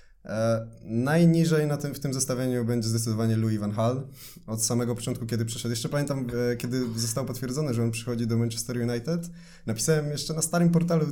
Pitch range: 110-150 Hz